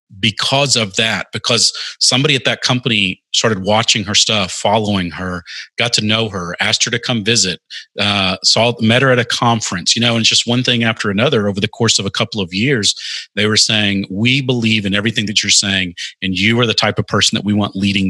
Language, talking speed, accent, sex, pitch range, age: English, 220 wpm, American, male, 100-115 Hz, 30-49